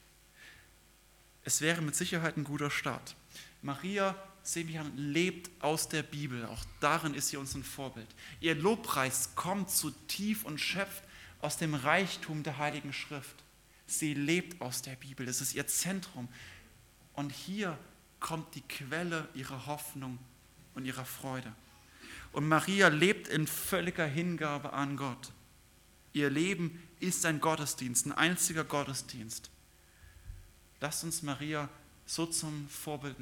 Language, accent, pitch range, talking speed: German, German, 125-160 Hz, 135 wpm